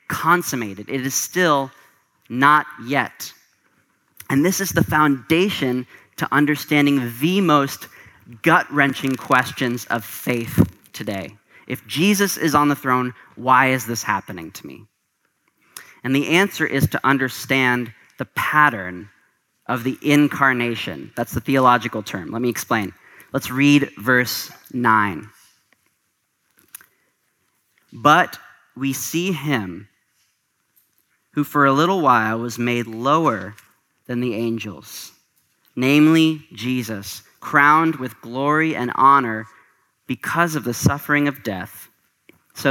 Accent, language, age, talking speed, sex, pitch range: American, English, 30-49, 115 wpm, male, 120-155 Hz